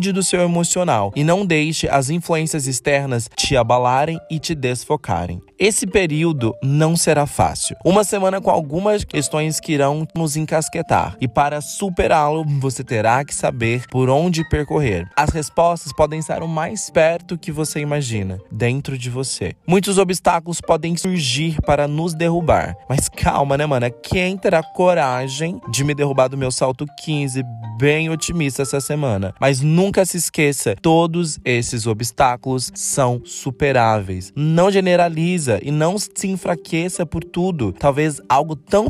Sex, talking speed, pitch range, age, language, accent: male, 150 wpm, 130-170 Hz, 20-39, Portuguese, Brazilian